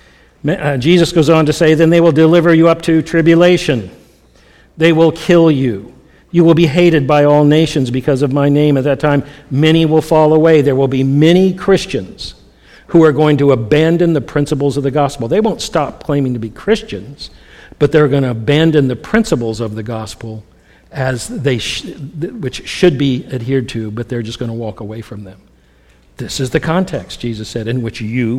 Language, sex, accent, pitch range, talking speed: English, male, American, 120-160 Hz, 195 wpm